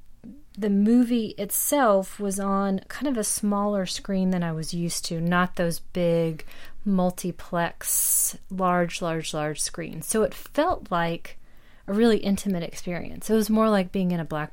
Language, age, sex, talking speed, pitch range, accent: English, 30-49, female, 160 wpm, 165-195 Hz, American